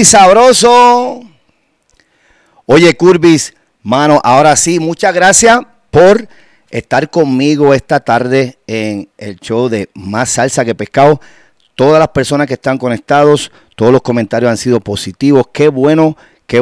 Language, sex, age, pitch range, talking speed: English, male, 40-59, 120-160 Hz, 130 wpm